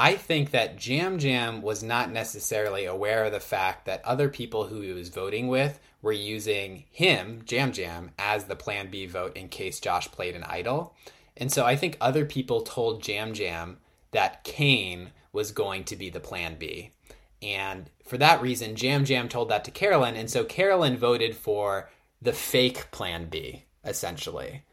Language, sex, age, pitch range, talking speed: English, male, 20-39, 95-135 Hz, 180 wpm